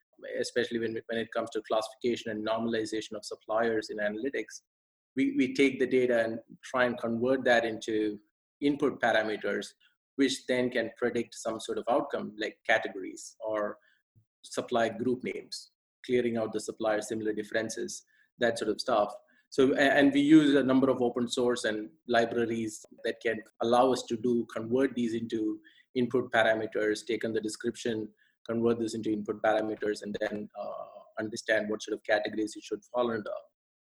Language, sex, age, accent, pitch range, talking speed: English, male, 20-39, Indian, 110-125 Hz, 165 wpm